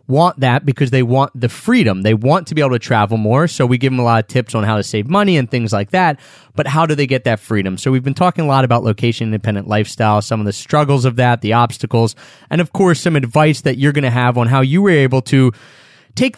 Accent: American